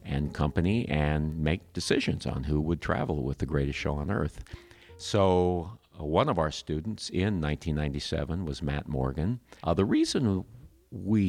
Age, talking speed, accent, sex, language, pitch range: 50-69, 160 wpm, American, male, English, 75-95 Hz